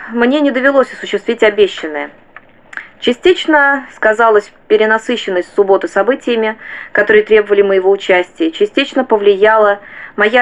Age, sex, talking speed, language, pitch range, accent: 20-39, female, 100 wpm, Russian, 175-245 Hz, native